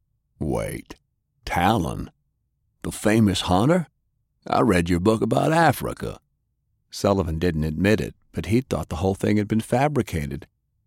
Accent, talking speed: American, 135 wpm